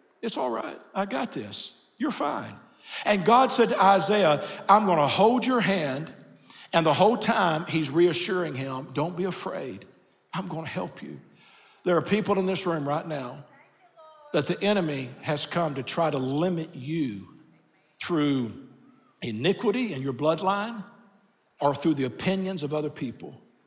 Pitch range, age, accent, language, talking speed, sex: 150-205 Hz, 60-79, American, English, 155 wpm, male